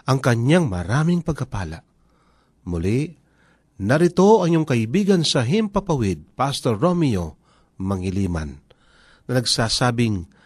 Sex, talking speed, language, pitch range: male, 90 wpm, Filipino, 115-165 Hz